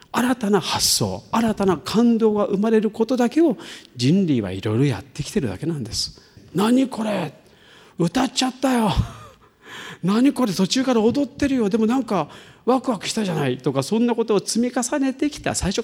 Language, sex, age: Japanese, male, 40-59